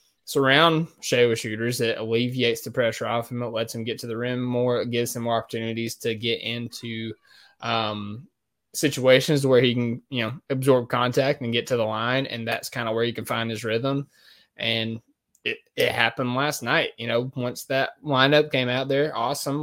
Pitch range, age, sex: 115-130 Hz, 20-39, male